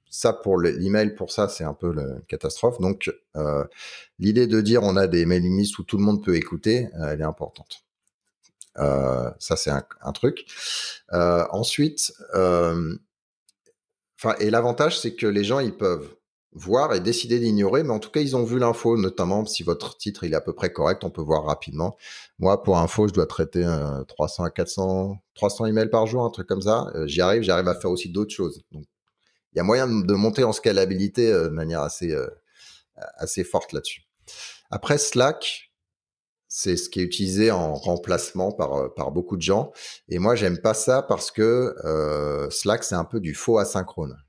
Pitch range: 90-115 Hz